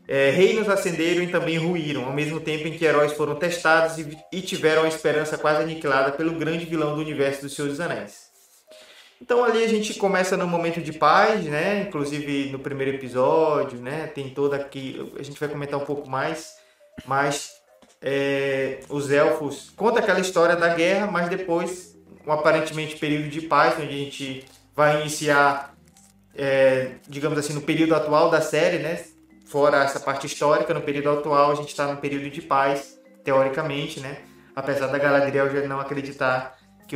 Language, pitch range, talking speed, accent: Portuguese, 140-160 Hz, 170 wpm, Brazilian